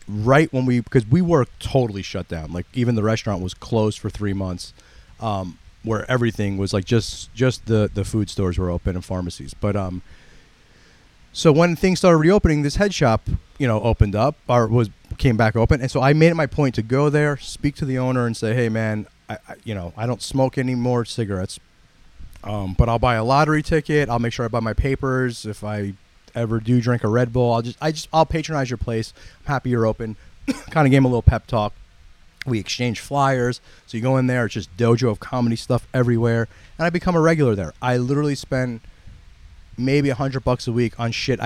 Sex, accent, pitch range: male, American, 105-130 Hz